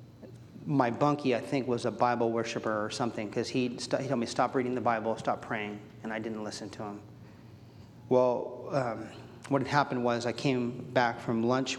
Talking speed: 195 wpm